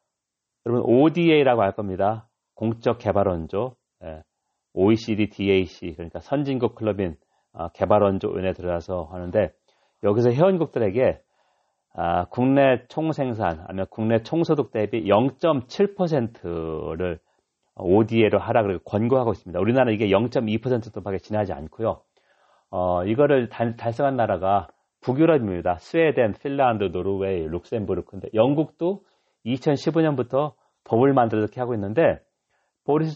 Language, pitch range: Korean, 95-130 Hz